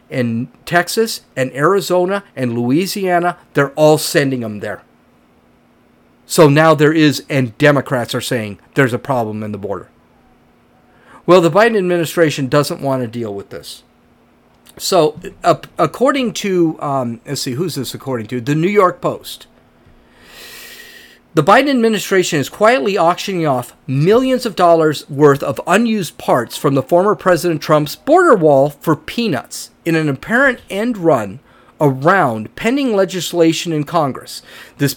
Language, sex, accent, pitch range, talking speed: English, male, American, 140-180 Hz, 145 wpm